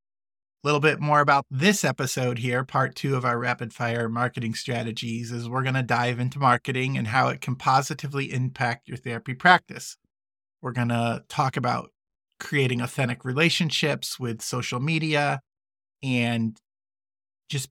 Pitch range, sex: 115-140 Hz, male